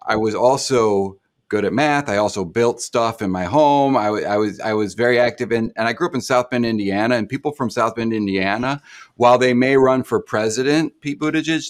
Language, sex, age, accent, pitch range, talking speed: English, male, 30-49, American, 100-125 Hz, 210 wpm